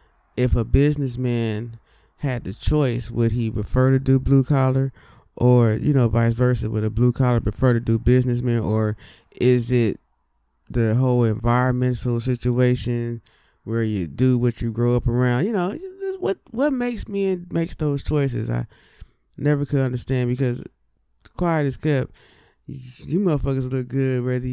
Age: 20-39